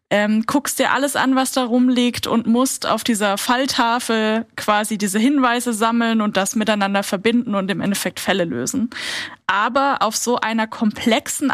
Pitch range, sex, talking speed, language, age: 210-245 Hz, female, 155 wpm, German, 10-29